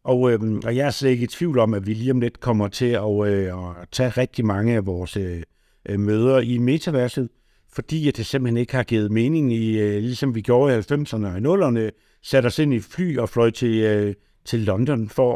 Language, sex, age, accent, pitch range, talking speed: Danish, male, 60-79, native, 110-145 Hz, 205 wpm